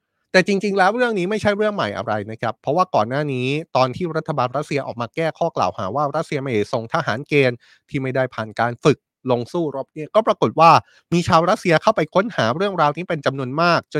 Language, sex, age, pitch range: Thai, male, 20-39, 125-180 Hz